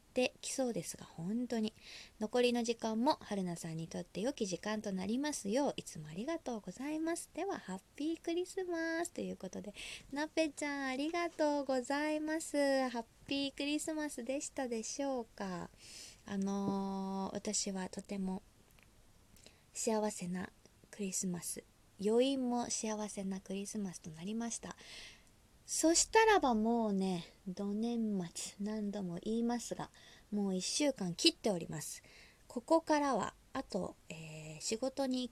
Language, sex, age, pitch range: Japanese, female, 20-39, 185-265 Hz